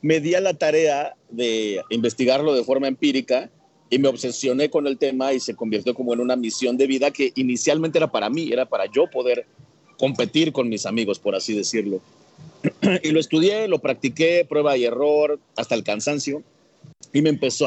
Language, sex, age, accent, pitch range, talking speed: Spanish, male, 40-59, Mexican, 120-150 Hz, 185 wpm